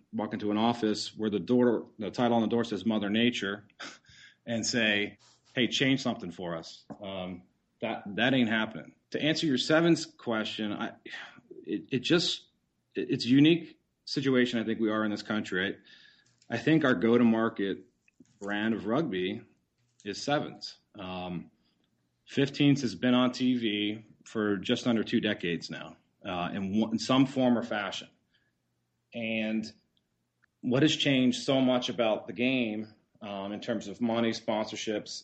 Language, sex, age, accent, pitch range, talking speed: English, male, 30-49, American, 95-120 Hz, 150 wpm